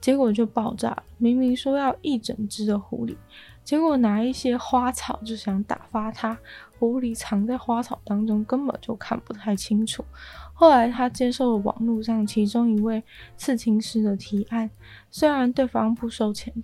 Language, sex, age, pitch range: Chinese, female, 20-39, 210-245 Hz